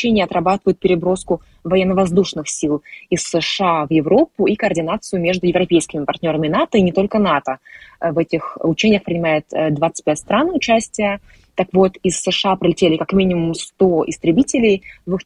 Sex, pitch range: female, 165-200 Hz